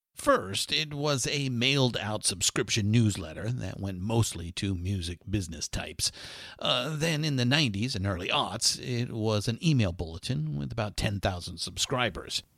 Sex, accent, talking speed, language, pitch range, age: male, American, 150 wpm, English, 95-125 Hz, 50-69